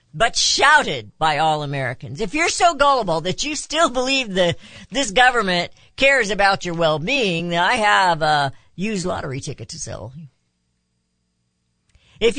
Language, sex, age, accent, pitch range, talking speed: English, female, 50-69, American, 130-205 Hz, 140 wpm